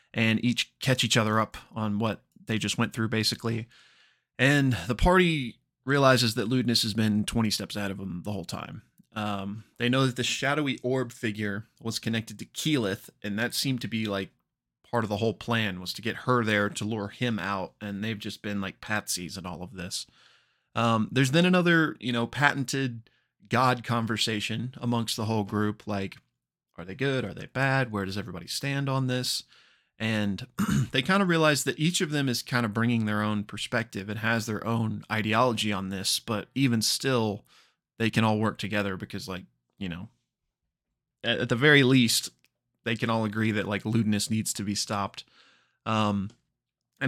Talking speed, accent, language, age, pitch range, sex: 190 wpm, American, English, 20-39, 105-125 Hz, male